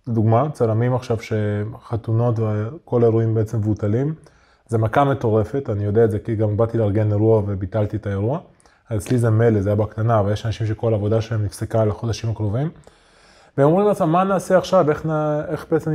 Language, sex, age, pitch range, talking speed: Hebrew, male, 20-39, 115-145 Hz, 190 wpm